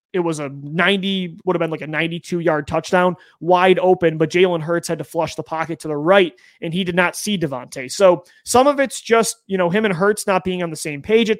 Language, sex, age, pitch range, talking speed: English, male, 30-49, 165-200 Hz, 255 wpm